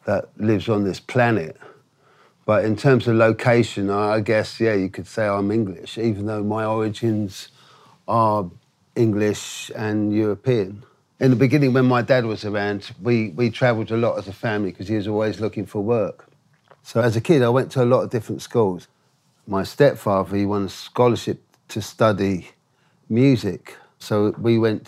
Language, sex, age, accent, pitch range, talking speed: English, male, 50-69, British, 105-120 Hz, 175 wpm